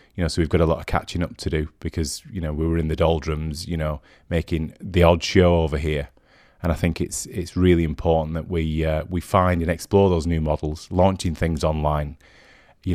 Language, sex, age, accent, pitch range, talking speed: English, male, 30-49, British, 80-90 Hz, 225 wpm